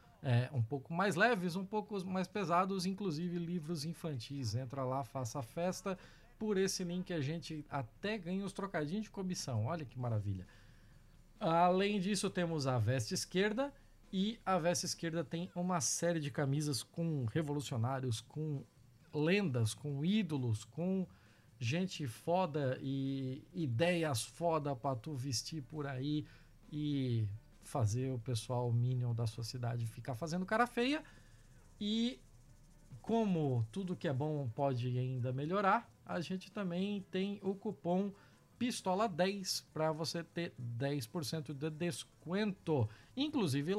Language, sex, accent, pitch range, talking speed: Portuguese, male, Brazilian, 130-185 Hz, 135 wpm